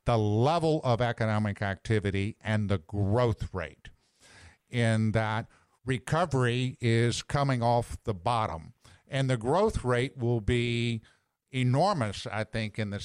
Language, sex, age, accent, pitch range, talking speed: English, male, 50-69, American, 110-125 Hz, 130 wpm